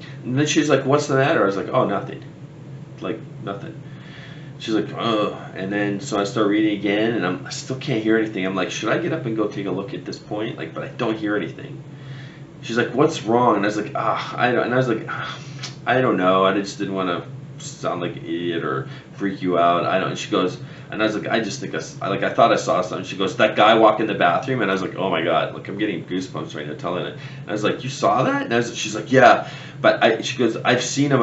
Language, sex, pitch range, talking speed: English, male, 100-140 Hz, 275 wpm